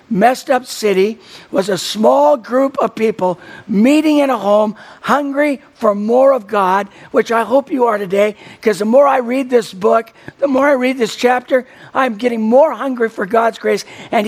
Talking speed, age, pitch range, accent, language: 190 wpm, 60-79, 200-260 Hz, American, English